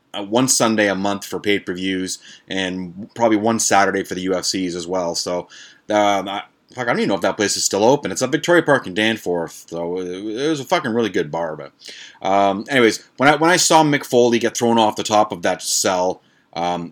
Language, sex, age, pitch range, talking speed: English, male, 30-49, 100-125 Hz, 225 wpm